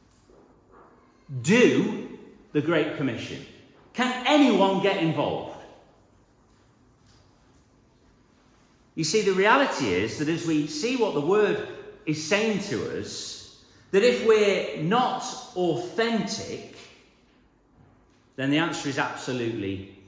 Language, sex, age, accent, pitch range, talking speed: English, male, 40-59, British, 170-235 Hz, 100 wpm